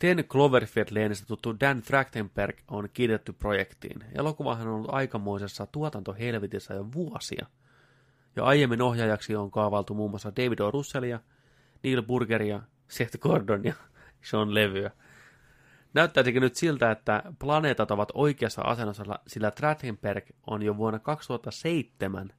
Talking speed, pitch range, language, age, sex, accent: 125 wpm, 105-130 Hz, Finnish, 30-49, male, native